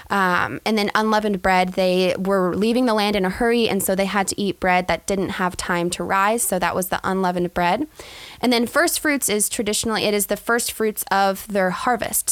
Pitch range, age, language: 190-230 Hz, 10-29, English